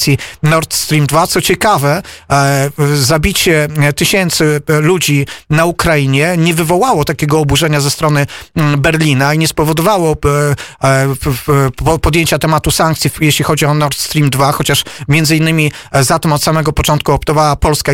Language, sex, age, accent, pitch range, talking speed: Polish, male, 30-49, native, 145-170 Hz, 130 wpm